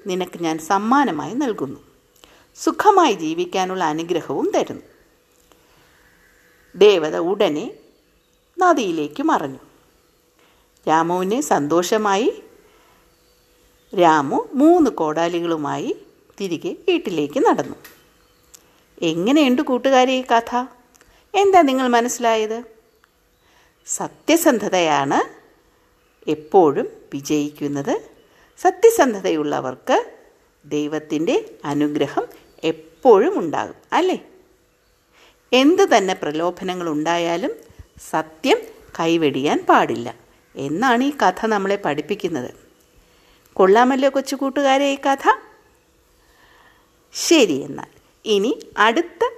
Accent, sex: native, female